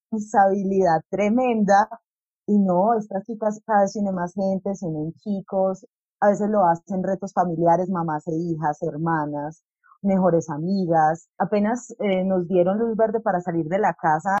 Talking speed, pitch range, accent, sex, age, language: 150 wpm, 165-200 Hz, Colombian, female, 30-49, Spanish